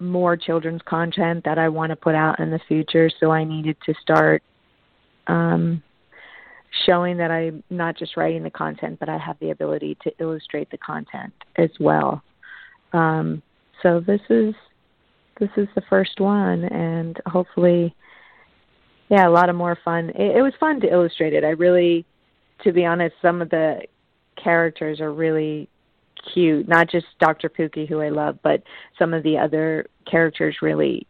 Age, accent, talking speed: 40-59, American, 170 wpm